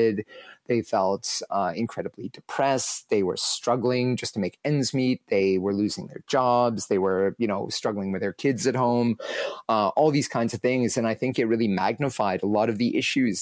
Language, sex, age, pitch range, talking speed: English, male, 30-49, 110-130 Hz, 200 wpm